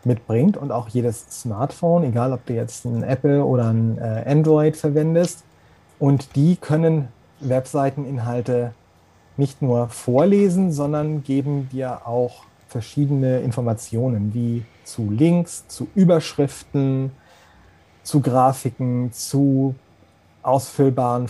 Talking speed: 105 wpm